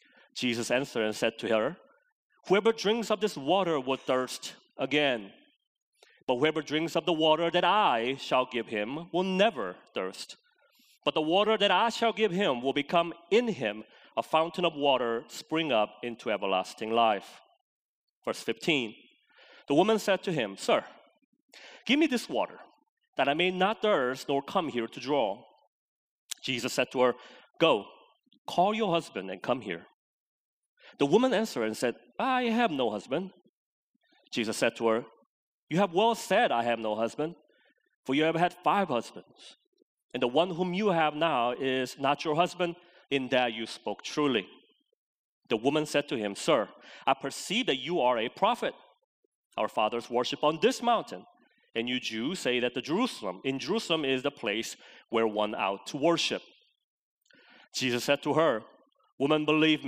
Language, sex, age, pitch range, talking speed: English, male, 30-49, 125-195 Hz, 165 wpm